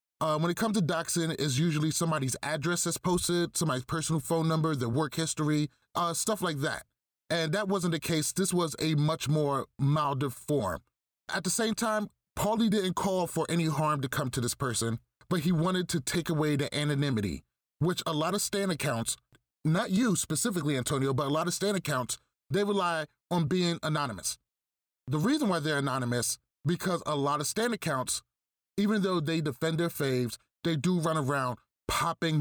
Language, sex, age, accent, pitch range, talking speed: English, male, 30-49, American, 140-180 Hz, 185 wpm